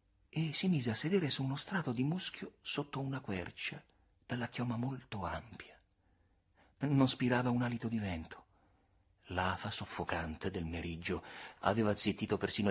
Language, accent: Italian, native